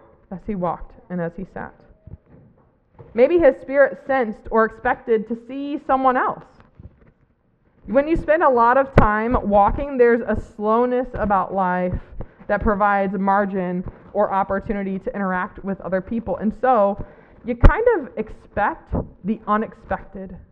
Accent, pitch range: American, 190-250 Hz